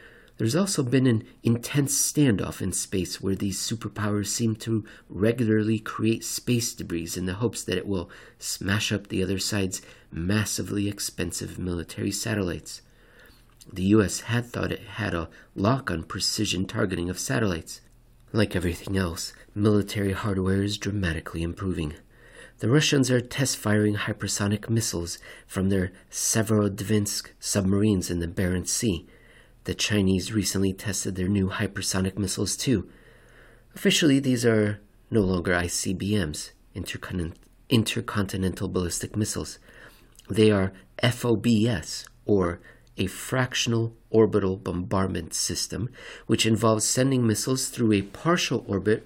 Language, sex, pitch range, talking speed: English, male, 95-115 Hz, 125 wpm